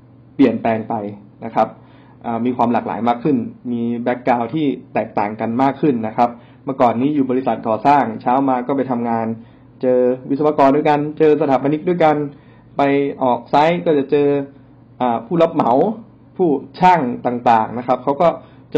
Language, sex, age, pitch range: Thai, male, 20-39, 120-145 Hz